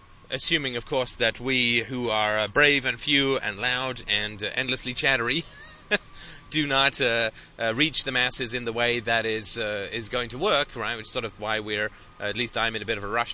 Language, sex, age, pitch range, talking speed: English, male, 30-49, 110-140 Hz, 220 wpm